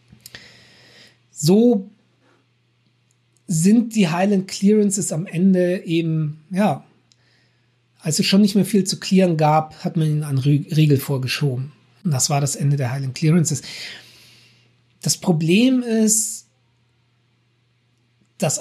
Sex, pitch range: male, 125-190 Hz